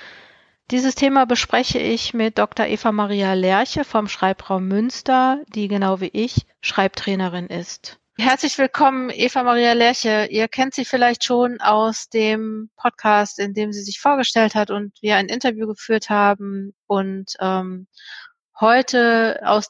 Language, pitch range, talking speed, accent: German, 205-235 Hz, 135 wpm, German